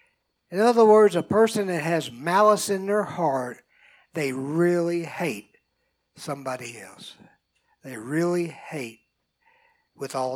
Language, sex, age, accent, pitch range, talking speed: English, male, 60-79, American, 180-255 Hz, 120 wpm